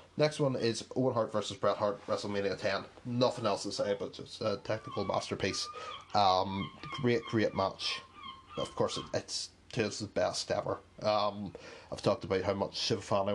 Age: 30-49